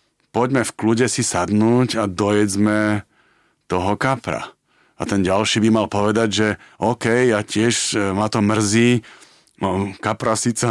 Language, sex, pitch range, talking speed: Slovak, male, 100-120 Hz, 140 wpm